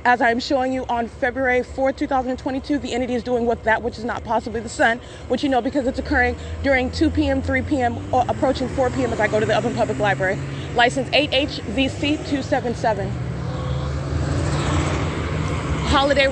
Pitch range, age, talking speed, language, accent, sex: 220-265 Hz, 20-39, 170 wpm, English, American, female